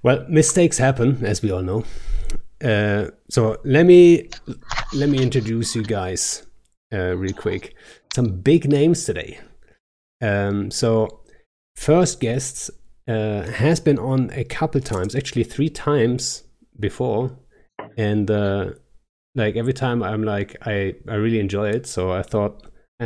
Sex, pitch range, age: male, 100-125 Hz, 30-49